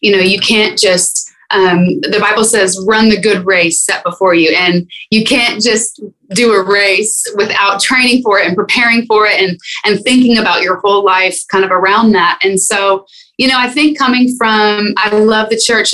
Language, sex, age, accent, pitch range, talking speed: English, female, 20-39, American, 195-245 Hz, 205 wpm